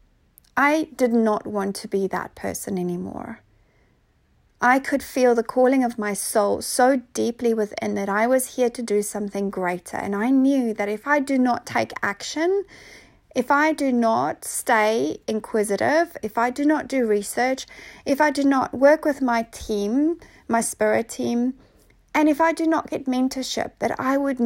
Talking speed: 175 wpm